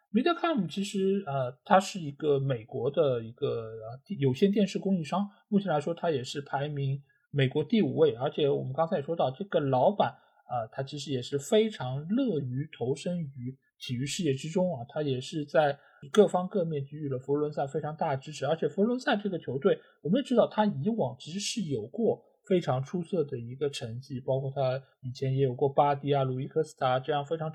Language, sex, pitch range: Chinese, male, 135-190 Hz